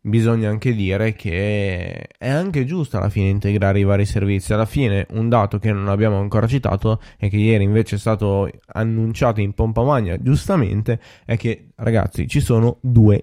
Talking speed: 175 wpm